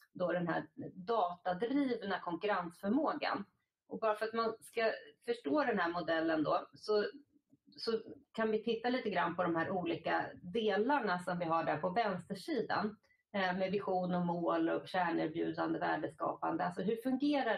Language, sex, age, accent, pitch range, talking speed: Swedish, female, 30-49, native, 175-225 Hz, 155 wpm